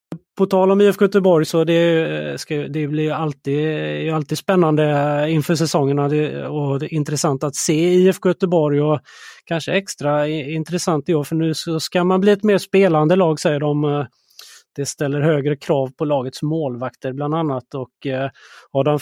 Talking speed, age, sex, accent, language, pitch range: 170 wpm, 30-49, male, native, Swedish, 145-170 Hz